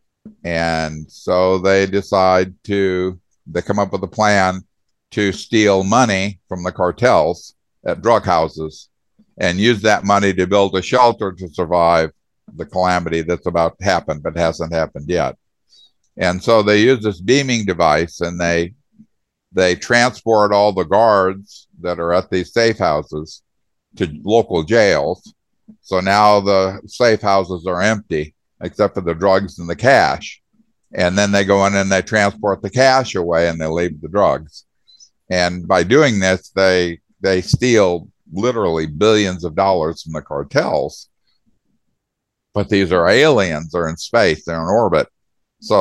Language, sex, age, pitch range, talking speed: English, male, 60-79, 85-105 Hz, 155 wpm